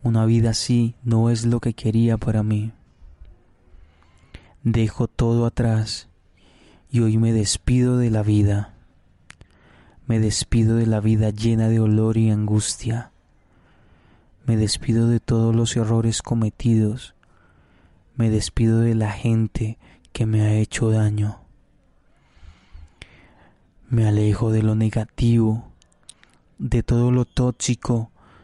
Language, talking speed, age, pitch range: Spanish, 120 wpm, 20-39, 90-115 Hz